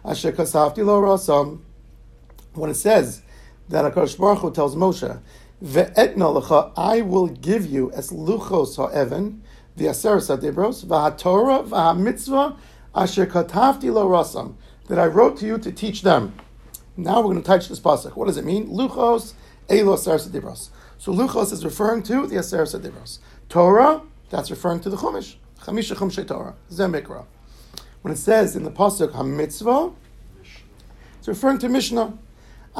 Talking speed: 135 wpm